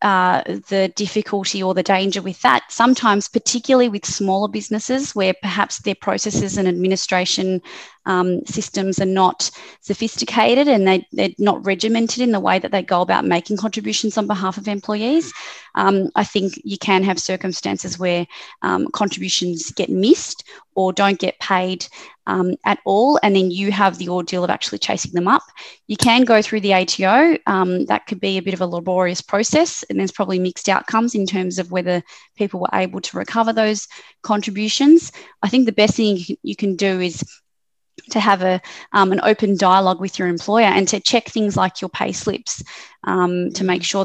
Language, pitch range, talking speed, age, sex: English, 185-215 Hz, 185 wpm, 20-39, female